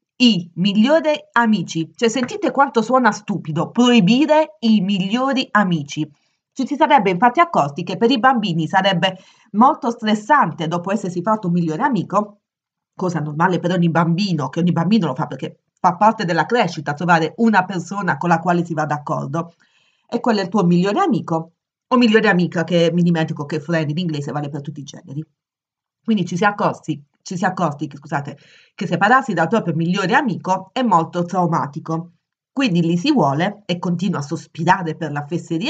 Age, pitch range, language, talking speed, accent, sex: 30-49, 165-230 Hz, Italian, 180 wpm, native, female